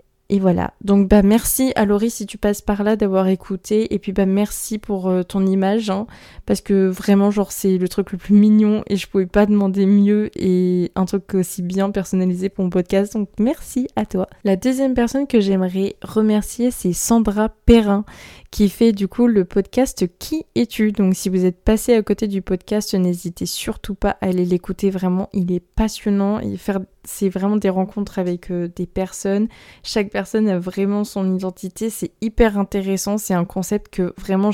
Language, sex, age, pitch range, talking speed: French, female, 20-39, 185-210 Hz, 195 wpm